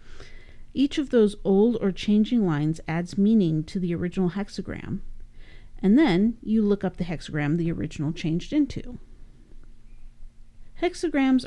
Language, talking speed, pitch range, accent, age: English, 130 wpm, 165-205 Hz, American, 40-59